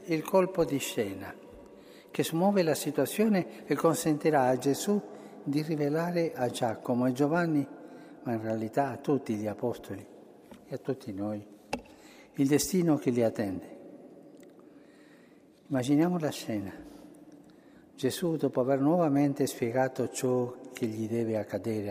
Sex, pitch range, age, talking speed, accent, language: male, 120-155 Hz, 60-79, 130 wpm, native, Italian